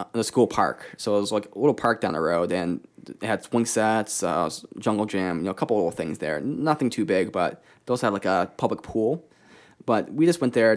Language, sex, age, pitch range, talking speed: English, male, 20-39, 100-120 Hz, 240 wpm